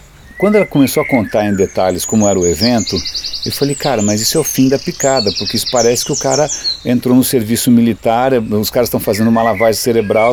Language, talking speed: Portuguese, 220 wpm